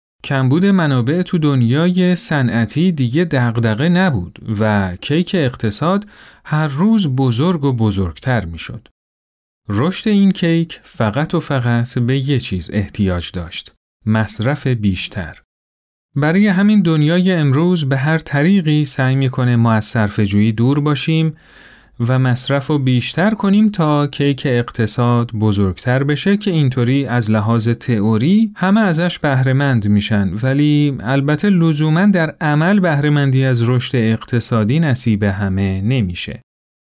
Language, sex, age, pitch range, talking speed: Persian, male, 40-59, 115-160 Hz, 120 wpm